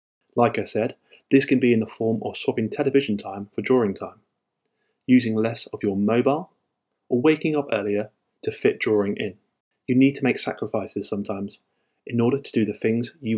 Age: 20-39